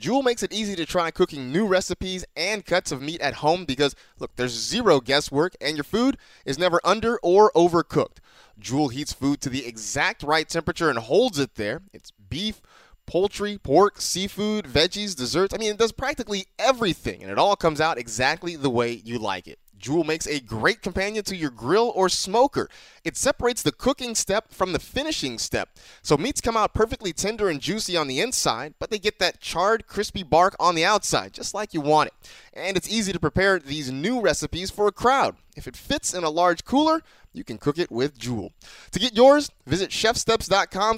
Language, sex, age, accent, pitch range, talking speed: English, male, 30-49, American, 155-215 Hz, 200 wpm